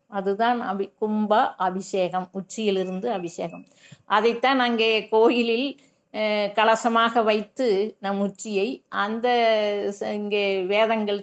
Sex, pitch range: female, 195-235 Hz